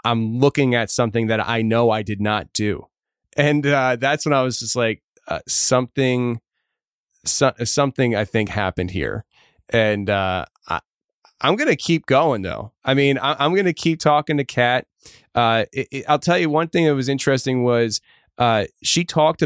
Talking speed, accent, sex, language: 175 wpm, American, male, English